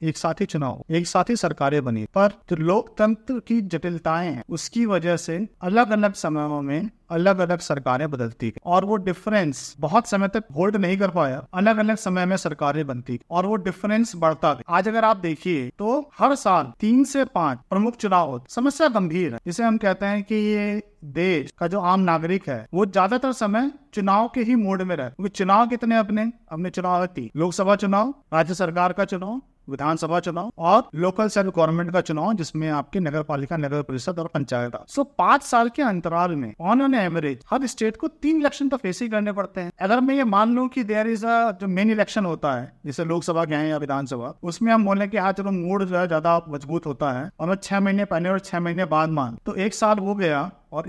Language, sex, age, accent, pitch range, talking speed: Hindi, male, 50-69, native, 160-215 Hz, 210 wpm